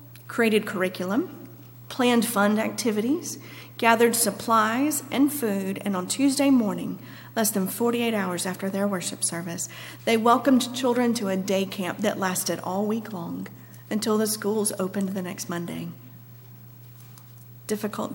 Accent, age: American, 40-59